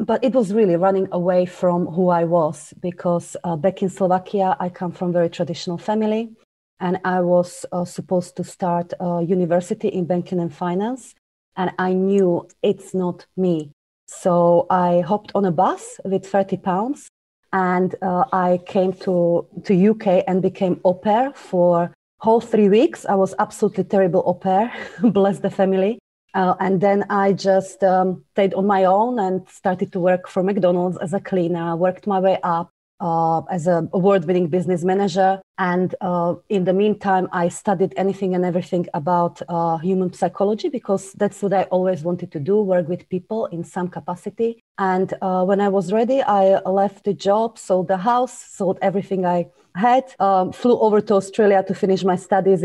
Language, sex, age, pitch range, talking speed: English, female, 30-49, 180-200 Hz, 180 wpm